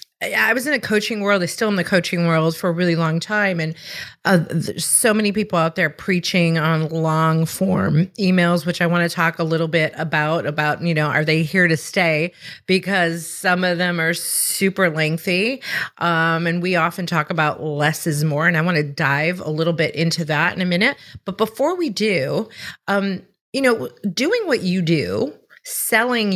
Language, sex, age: English, female, 30-49